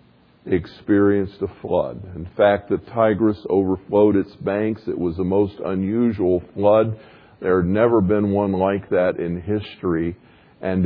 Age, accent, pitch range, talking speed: 50-69, American, 95-130 Hz, 145 wpm